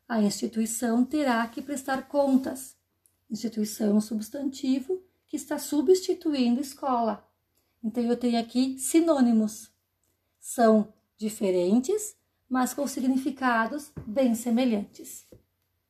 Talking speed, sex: 100 wpm, female